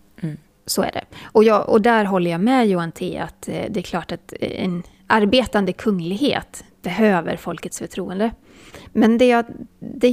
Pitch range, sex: 180-235 Hz, female